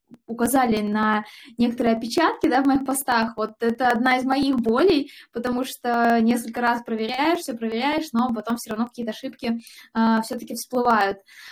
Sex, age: female, 20-39